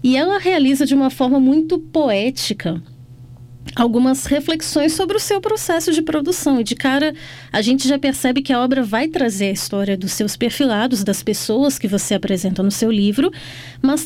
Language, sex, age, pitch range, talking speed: Portuguese, female, 20-39, 200-280 Hz, 180 wpm